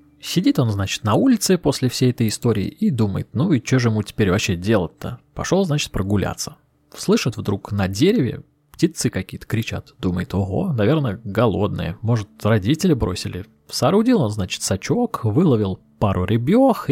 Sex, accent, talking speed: male, native, 155 wpm